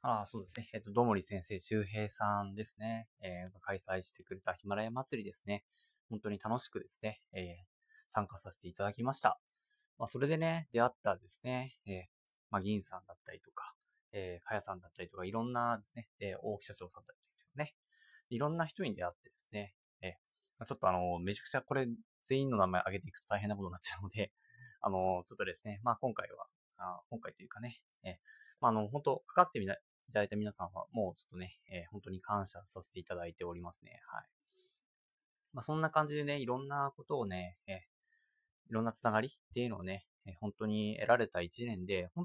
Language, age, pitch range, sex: Japanese, 20-39, 95-135 Hz, male